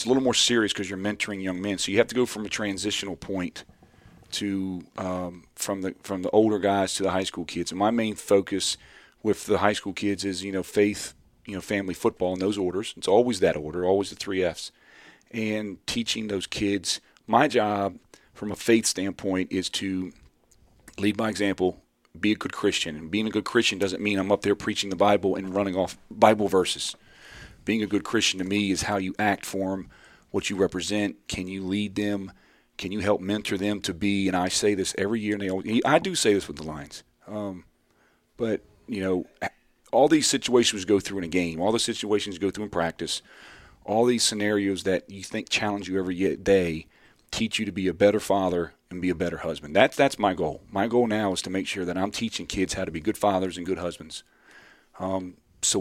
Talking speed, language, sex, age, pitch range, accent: 225 wpm, English, male, 40-59, 95-105 Hz, American